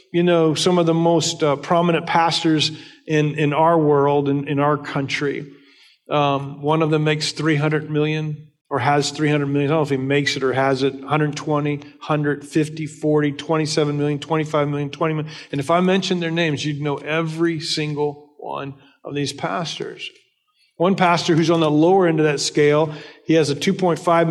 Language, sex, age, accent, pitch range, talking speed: English, male, 40-59, American, 145-175 Hz, 185 wpm